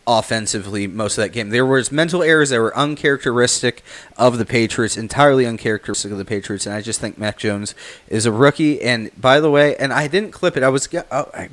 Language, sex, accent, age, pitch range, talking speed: English, male, American, 30-49, 110-145 Hz, 215 wpm